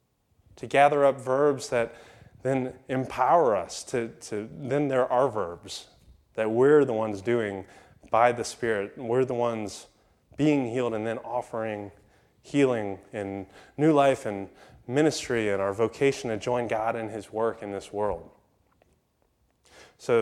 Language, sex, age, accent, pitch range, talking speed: English, male, 30-49, American, 100-130 Hz, 145 wpm